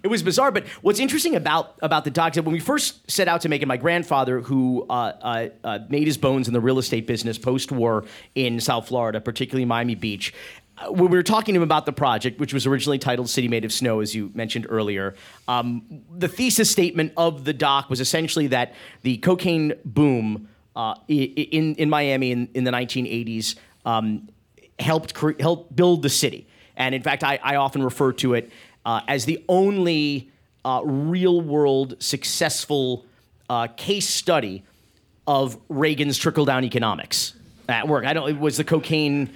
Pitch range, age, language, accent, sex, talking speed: 125-160 Hz, 40-59, English, American, male, 180 wpm